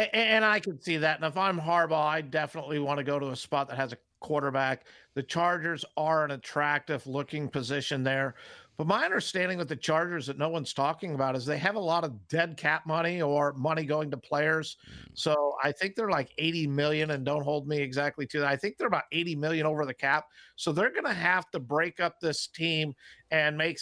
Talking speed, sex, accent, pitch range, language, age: 225 wpm, male, American, 150-180 Hz, English, 50-69